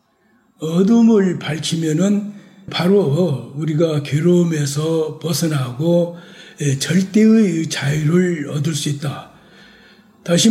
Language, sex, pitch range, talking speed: English, male, 155-195 Hz, 70 wpm